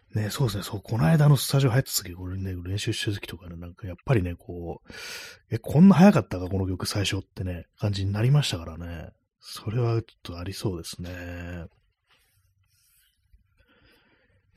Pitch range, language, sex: 90-115 Hz, Japanese, male